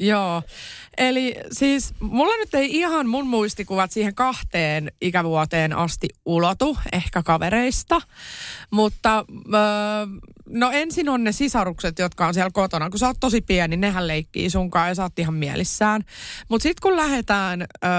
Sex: female